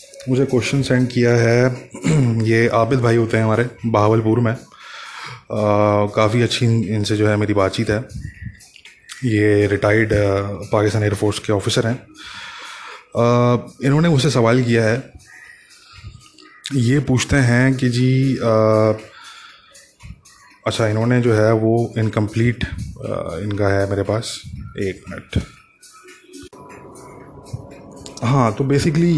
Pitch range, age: 105-125 Hz, 20-39